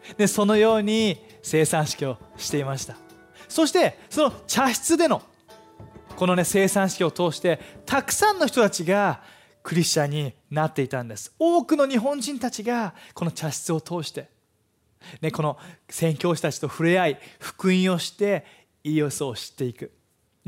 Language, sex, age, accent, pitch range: Japanese, male, 20-39, native, 145-195 Hz